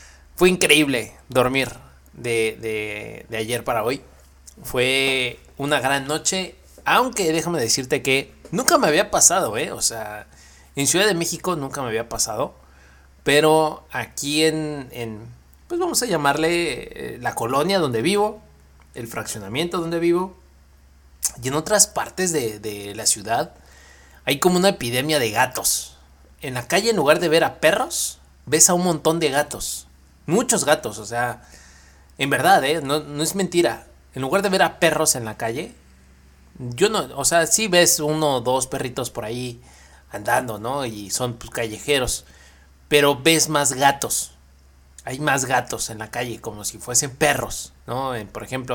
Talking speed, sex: 160 wpm, male